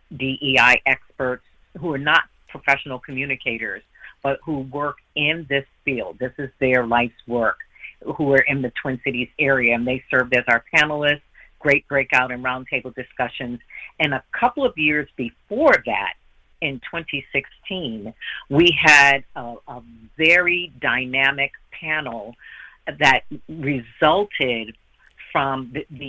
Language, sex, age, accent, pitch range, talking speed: English, female, 50-69, American, 125-145 Hz, 130 wpm